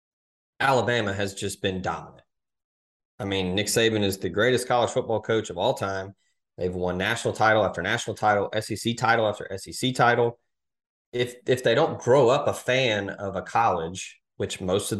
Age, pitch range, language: 30-49, 100-130 Hz, English